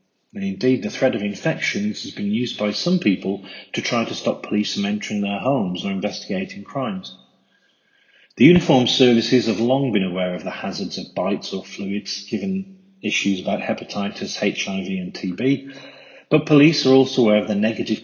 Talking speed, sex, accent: 175 wpm, male, British